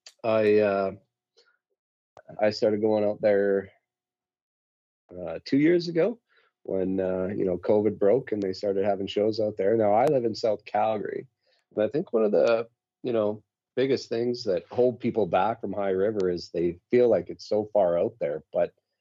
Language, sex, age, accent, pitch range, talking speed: English, male, 40-59, American, 90-115 Hz, 180 wpm